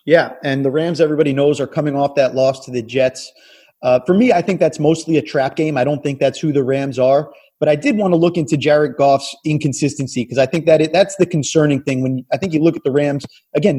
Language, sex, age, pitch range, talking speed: English, male, 30-49, 145-170 Hz, 260 wpm